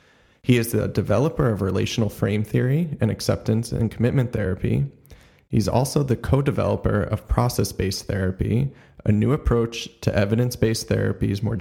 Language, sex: English, male